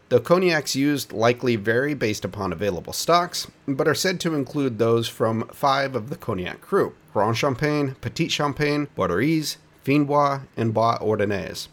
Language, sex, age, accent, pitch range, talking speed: English, male, 40-59, American, 110-150 Hz, 155 wpm